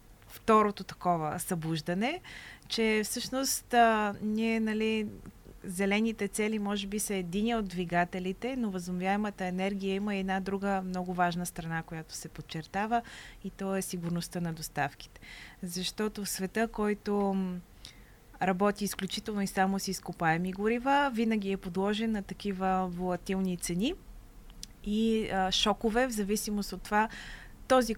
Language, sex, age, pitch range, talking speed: Bulgarian, female, 20-39, 185-225 Hz, 125 wpm